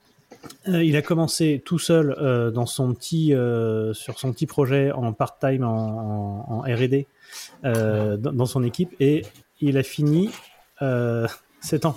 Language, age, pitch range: French, 30-49, 105-135 Hz